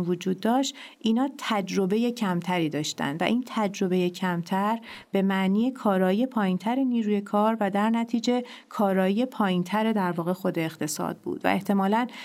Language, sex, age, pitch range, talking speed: Persian, female, 40-59, 185-225 Hz, 135 wpm